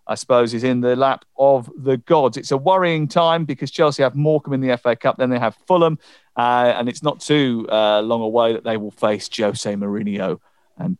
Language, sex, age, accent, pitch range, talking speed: English, male, 40-59, British, 120-165 Hz, 220 wpm